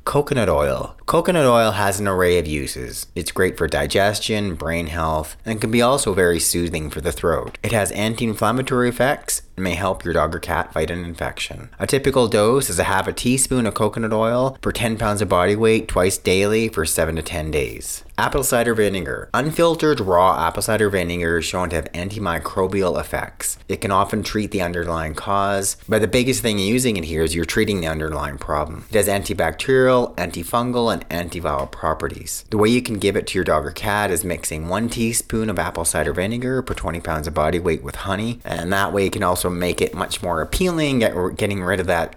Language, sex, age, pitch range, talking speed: English, male, 30-49, 85-110 Hz, 210 wpm